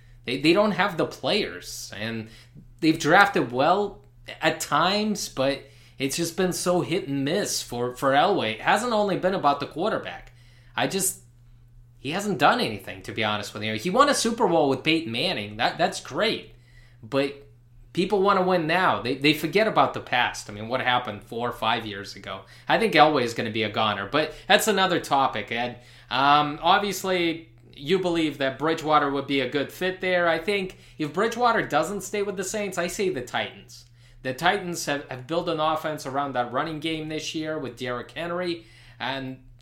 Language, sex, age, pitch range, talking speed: English, male, 20-39, 120-170 Hz, 195 wpm